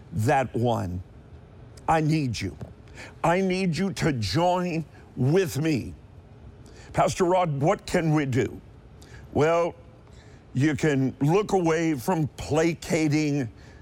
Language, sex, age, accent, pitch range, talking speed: English, male, 50-69, American, 110-165 Hz, 110 wpm